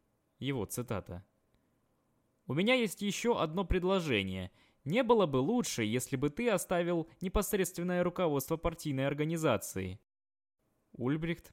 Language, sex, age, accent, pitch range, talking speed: Russian, male, 20-39, native, 105-150 Hz, 110 wpm